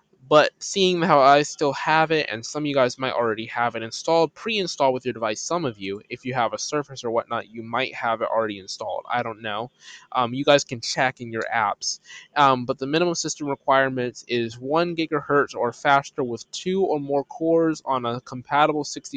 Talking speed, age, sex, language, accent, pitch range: 210 wpm, 20-39, male, English, American, 125-155 Hz